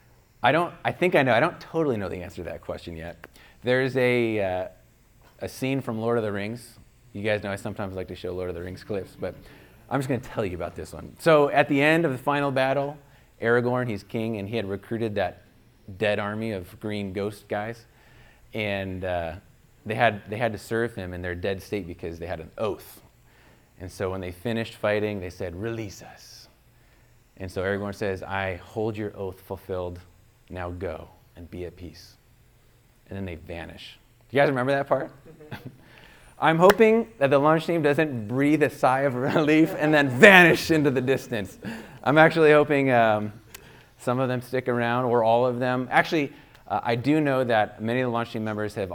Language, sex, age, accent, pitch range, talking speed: English, male, 30-49, American, 100-130 Hz, 205 wpm